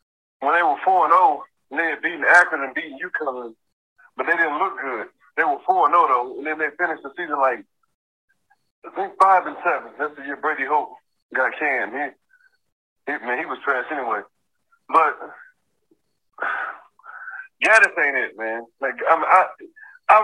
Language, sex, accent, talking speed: English, male, American, 180 wpm